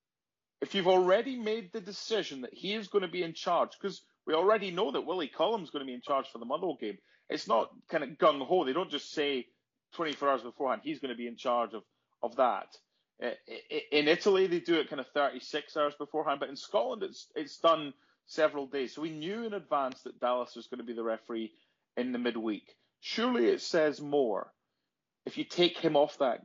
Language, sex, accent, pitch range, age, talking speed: English, male, British, 125-185 Hz, 30-49, 220 wpm